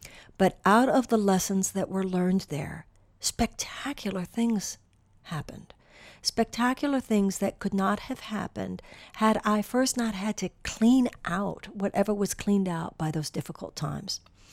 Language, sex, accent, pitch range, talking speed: English, female, American, 170-215 Hz, 145 wpm